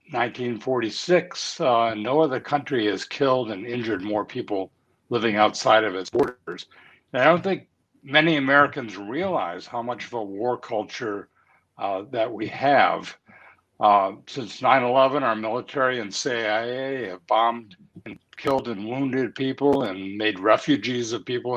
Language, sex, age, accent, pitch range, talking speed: English, male, 60-79, American, 110-135 Hz, 145 wpm